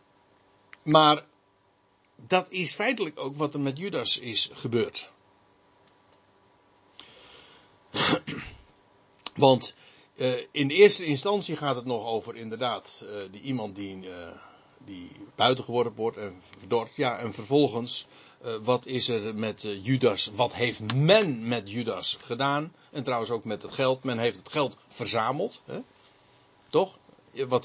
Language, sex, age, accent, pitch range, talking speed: Dutch, male, 60-79, Dutch, 100-135 Hz, 125 wpm